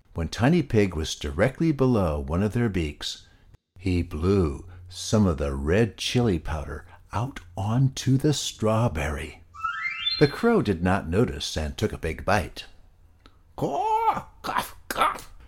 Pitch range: 80-115 Hz